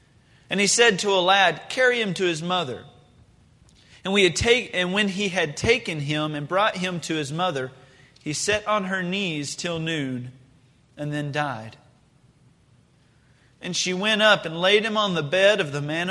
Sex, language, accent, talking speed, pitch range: male, English, American, 185 wpm, 155-205 Hz